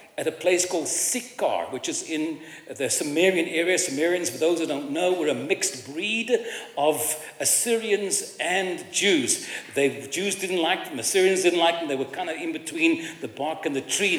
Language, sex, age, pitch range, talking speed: English, male, 60-79, 145-195 Hz, 195 wpm